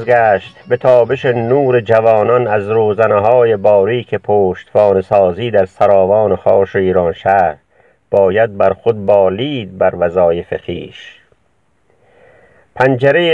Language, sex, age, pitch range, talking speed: Persian, male, 50-69, 110-135 Hz, 105 wpm